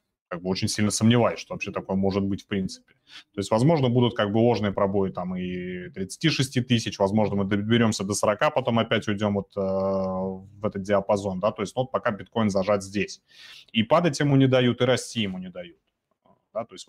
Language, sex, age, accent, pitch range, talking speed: Russian, male, 30-49, native, 100-120 Hz, 210 wpm